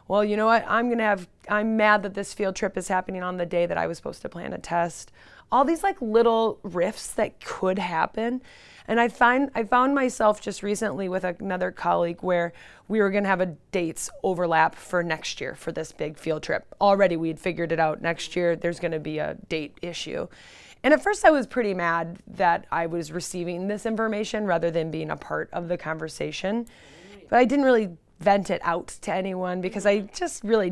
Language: English